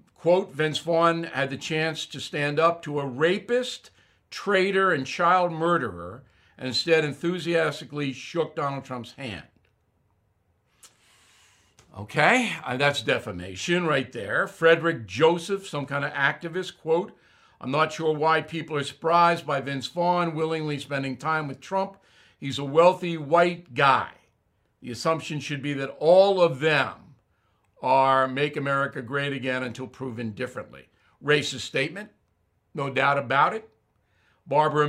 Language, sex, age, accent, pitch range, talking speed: English, male, 60-79, American, 130-165 Hz, 135 wpm